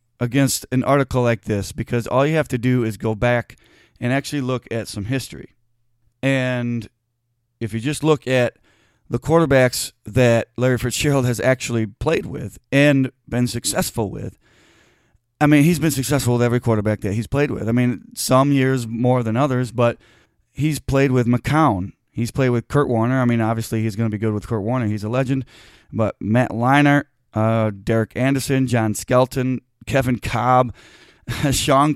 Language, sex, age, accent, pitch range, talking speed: English, male, 30-49, American, 115-135 Hz, 175 wpm